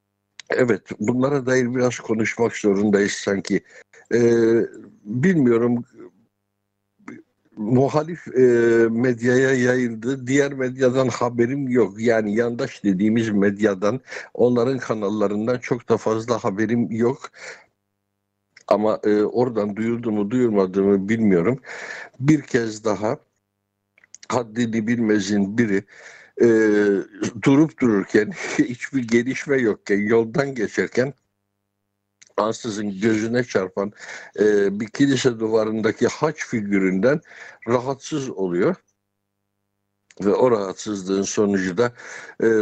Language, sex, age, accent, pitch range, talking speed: Turkish, male, 60-79, native, 100-125 Hz, 90 wpm